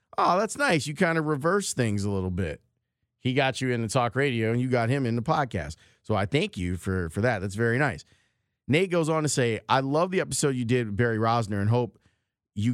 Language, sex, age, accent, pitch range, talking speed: English, male, 30-49, American, 110-135 Hz, 245 wpm